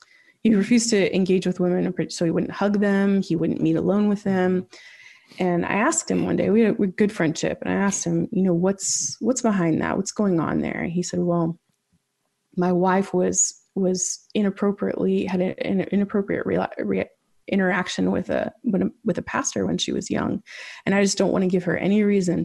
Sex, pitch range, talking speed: female, 175-200 Hz, 200 wpm